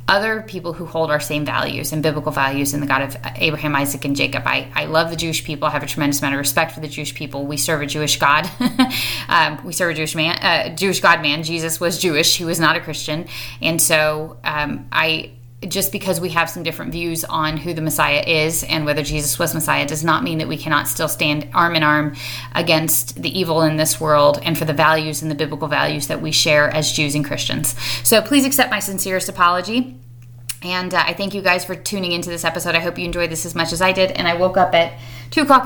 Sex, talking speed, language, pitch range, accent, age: female, 245 wpm, English, 150-180 Hz, American, 30-49